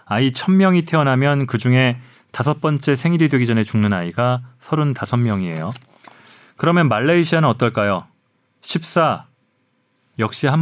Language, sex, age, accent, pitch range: Korean, male, 30-49, native, 115-155 Hz